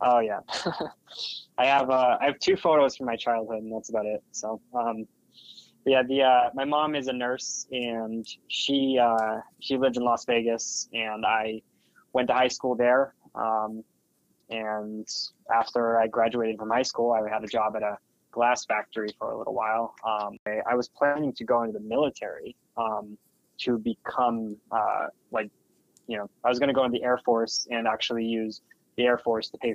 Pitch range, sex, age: 110-125 Hz, male, 20-39